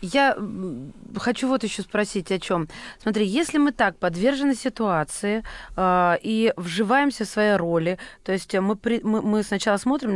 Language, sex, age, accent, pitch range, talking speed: Russian, female, 30-49, native, 185-245 Hz, 160 wpm